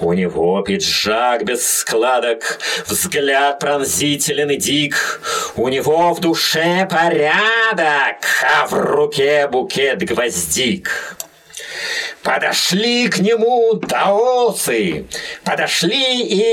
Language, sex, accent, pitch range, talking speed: Russian, male, native, 180-255 Hz, 85 wpm